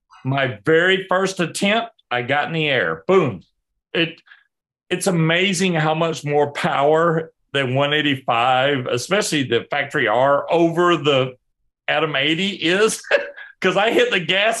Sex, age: male, 40-59